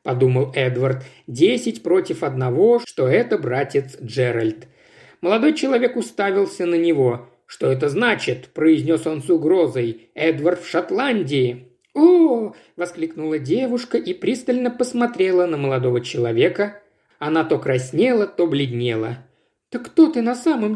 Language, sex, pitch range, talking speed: Russian, male, 135-225 Hz, 125 wpm